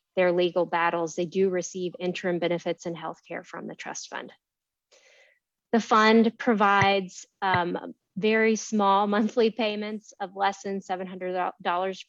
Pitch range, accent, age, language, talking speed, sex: 185-220 Hz, American, 30-49, English, 135 wpm, female